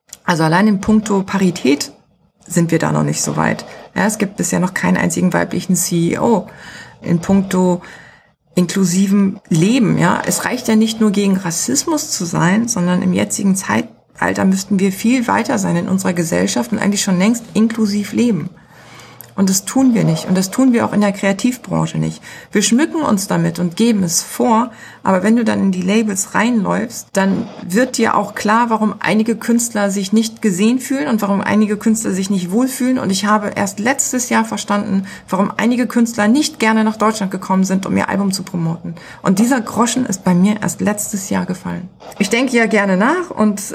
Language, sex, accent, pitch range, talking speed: German, female, German, 185-225 Hz, 190 wpm